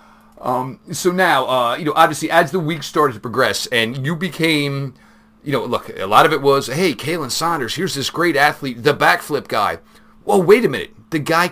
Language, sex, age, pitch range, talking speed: English, male, 40-59, 125-160 Hz, 210 wpm